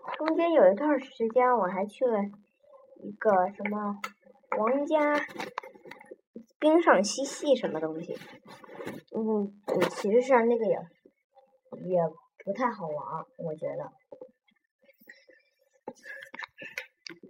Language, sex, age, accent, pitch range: Chinese, male, 20-39, native, 200-270 Hz